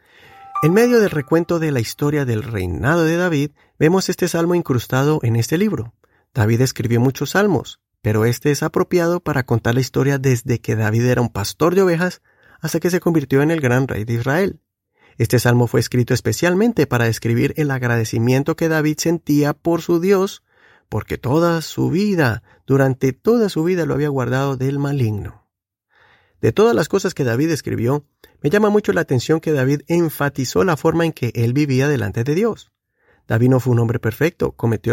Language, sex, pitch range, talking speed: Spanish, male, 120-165 Hz, 185 wpm